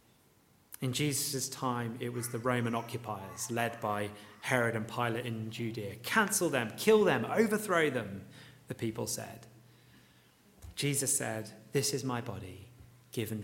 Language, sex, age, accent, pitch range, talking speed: English, male, 30-49, British, 110-145 Hz, 140 wpm